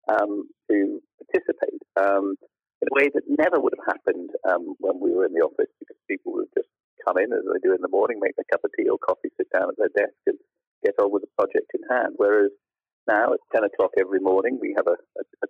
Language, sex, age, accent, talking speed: English, male, 50-69, British, 245 wpm